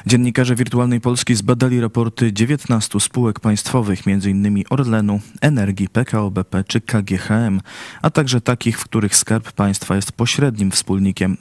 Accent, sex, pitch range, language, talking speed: native, male, 100-125 Hz, Polish, 125 wpm